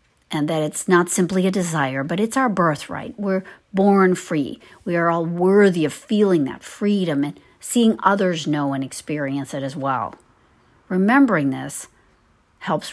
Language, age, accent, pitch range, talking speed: English, 60-79, American, 145-190 Hz, 160 wpm